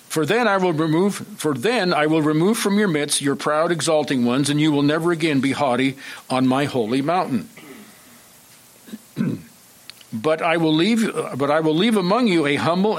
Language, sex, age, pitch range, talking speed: English, male, 50-69, 135-170 Hz, 185 wpm